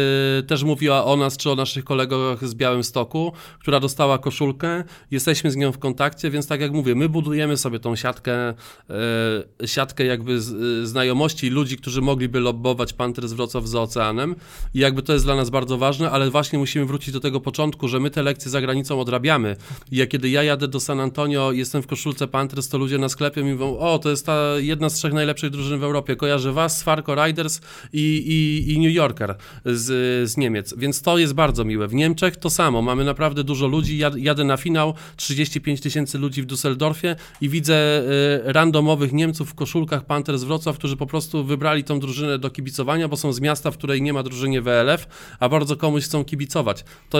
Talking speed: 195 wpm